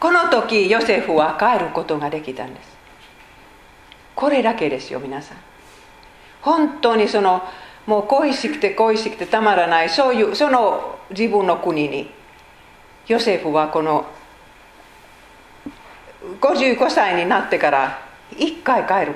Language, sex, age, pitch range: Japanese, female, 40-59, 160-235 Hz